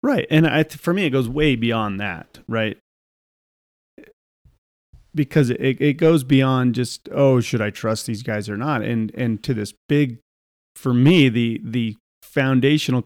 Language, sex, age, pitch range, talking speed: English, male, 30-49, 115-145 Hz, 160 wpm